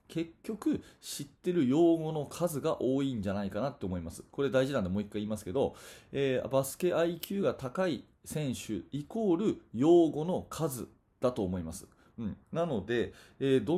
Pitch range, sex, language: 100-160 Hz, male, Japanese